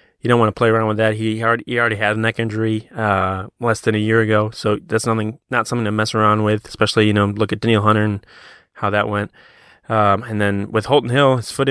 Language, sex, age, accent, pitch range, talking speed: English, male, 20-39, American, 105-120 Hz, 255 wpm